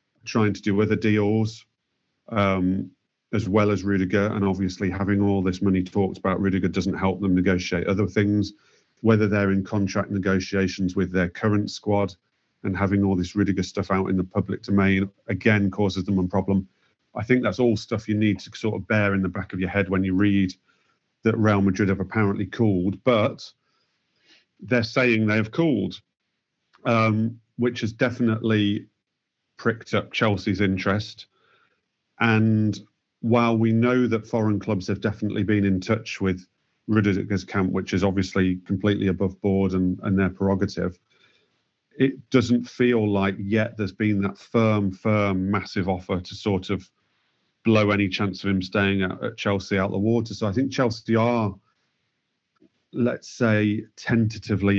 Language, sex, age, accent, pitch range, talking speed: English, male, 40-59, British, 95-110 Hz, 165 wpm